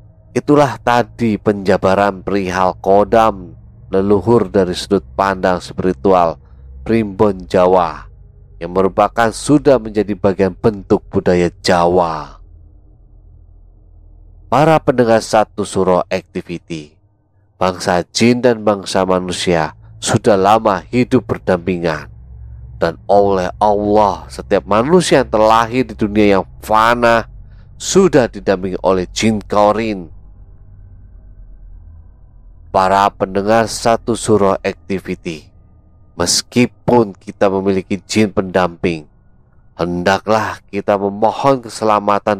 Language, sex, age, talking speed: Indonesian, male, 30-49, 90 wpm